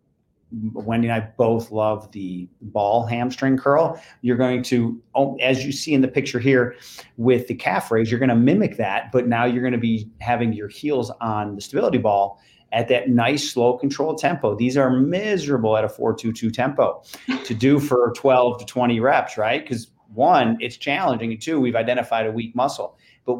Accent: American